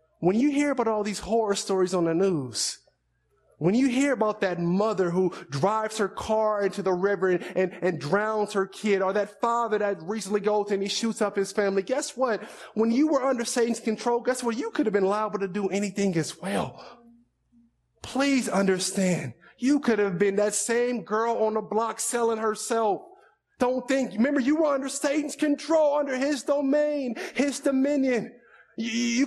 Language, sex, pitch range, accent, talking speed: English, male, 200-265 Hz, American, 185 wpm